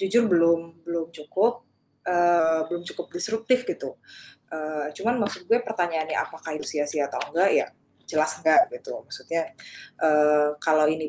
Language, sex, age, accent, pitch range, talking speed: Indonesian, female, 20-39, native, 155-195 Hz, 145 wpm